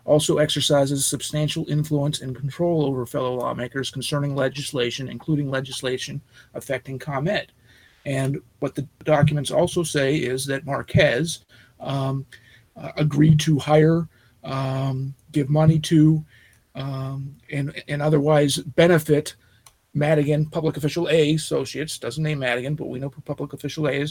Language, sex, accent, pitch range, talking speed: English, male, American, 135-160 Hz, 130 wpm